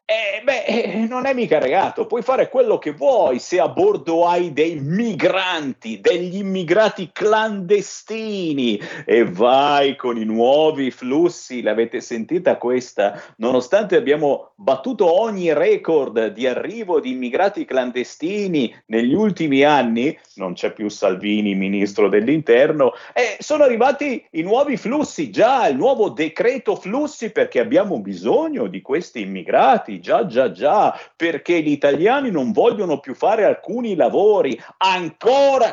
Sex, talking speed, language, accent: male, 135 wpm, Italian, native